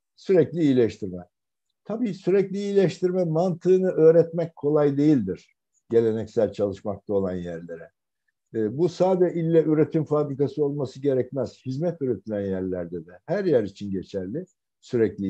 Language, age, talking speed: Turkish, 60-79, 120 wpm